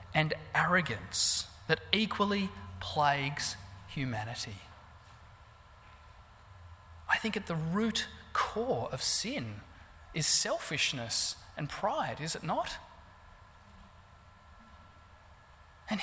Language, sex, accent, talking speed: English, male, Australian, 80 wpm